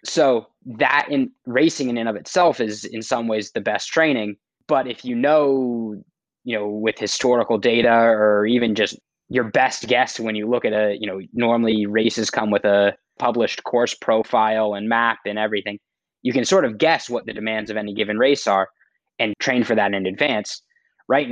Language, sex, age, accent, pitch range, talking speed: English, male, 20-39, American, 105-130 Hz, 195 wpm